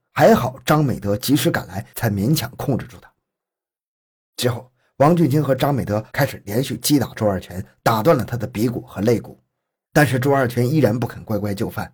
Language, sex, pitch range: Chinese, male, 105-130 Hz